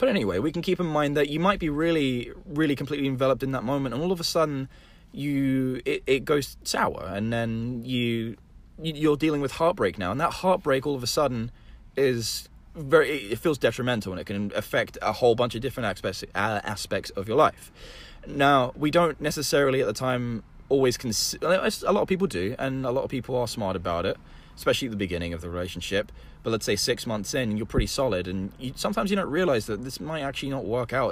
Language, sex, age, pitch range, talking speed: English, male, 20-39, 100-140 Hz, 220 wpm